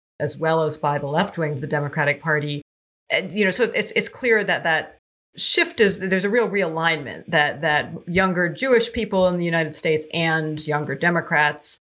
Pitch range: 150-185 Hz